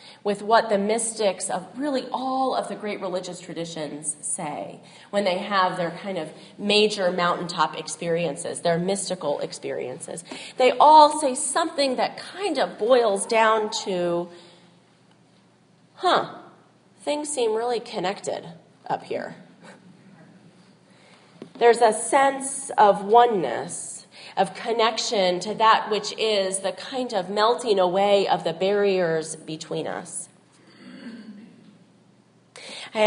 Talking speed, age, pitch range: 115 wpm, 30-49, 185-235 Hz